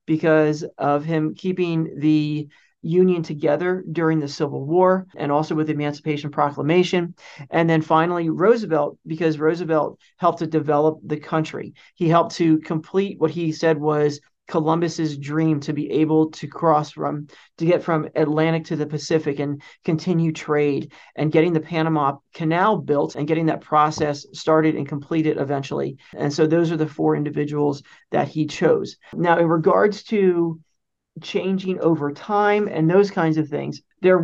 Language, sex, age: English, male, 40-59